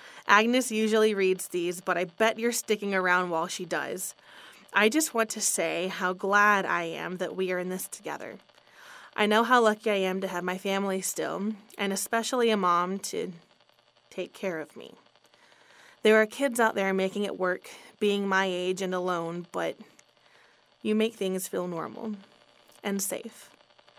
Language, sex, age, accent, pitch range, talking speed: English, female, 20-39, American, 185-230 Hz, 175 wpm